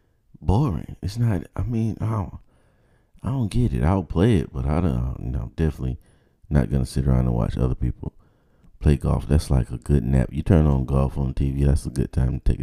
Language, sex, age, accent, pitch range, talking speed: English, male, 30-49, American, 65-85 Hz, 225 wpm